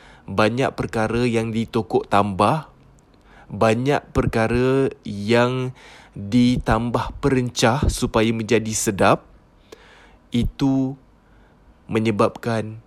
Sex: male